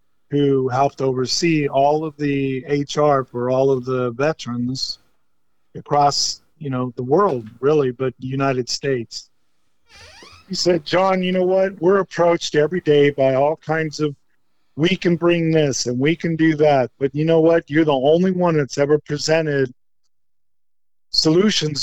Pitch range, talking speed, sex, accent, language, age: 130-155 Hz, 155 wpm, male, American, English, 50-69